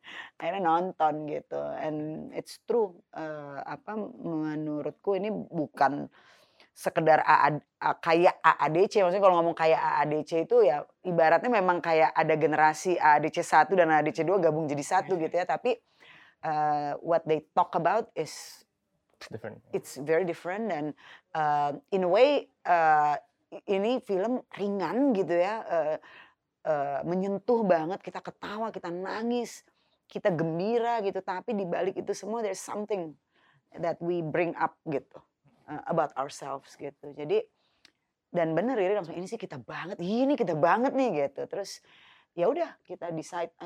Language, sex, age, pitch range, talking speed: Indonesian, female, 20-39, 155-200 Hz, 145 wpm